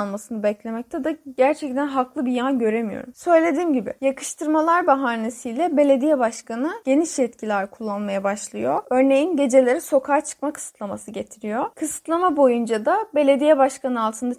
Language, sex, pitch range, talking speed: Turkish, female, 245-310 Hz, 125 wpm